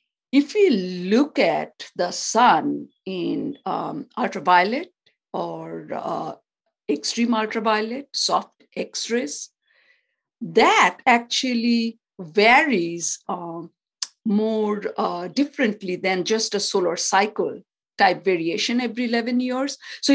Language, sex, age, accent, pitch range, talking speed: English, female, 50-69, Indian, 180-265 Hz, 100 wpm